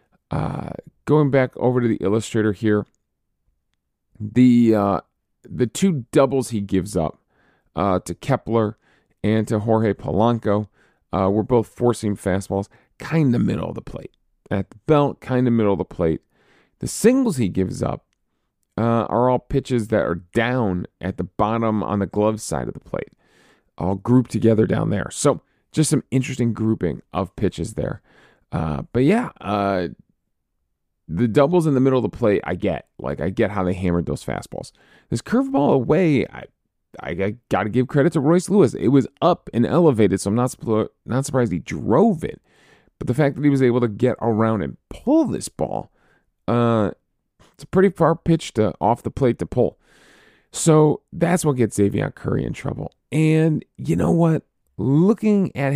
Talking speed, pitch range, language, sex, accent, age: 180 wpm, 100-135 Hz, English, male, American, 40-59